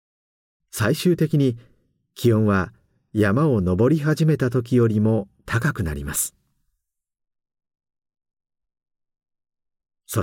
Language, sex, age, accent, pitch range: Japanese, male, 50-69, native, 100-125 Hz